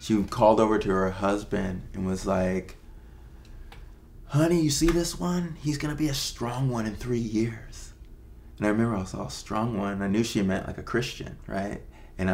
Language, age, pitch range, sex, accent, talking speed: English, 20-39, 95-110 Hz, male, American, 200 wpm